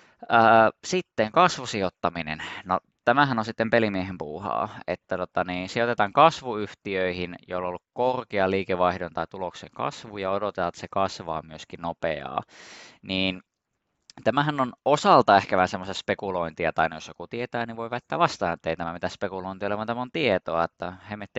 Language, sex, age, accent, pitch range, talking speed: Finnish, male, 20-39, native, 90-115 Hz, 150 wpm